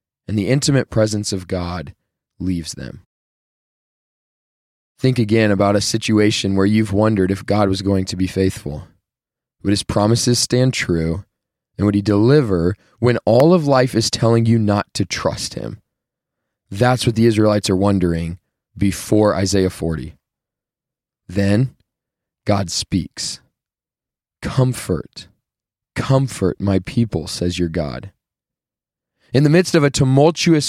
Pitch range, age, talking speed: 105-160 Hz, 20-39, 135 wpm